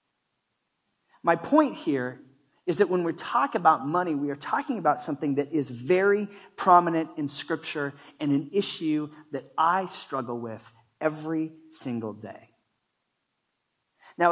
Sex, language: male, English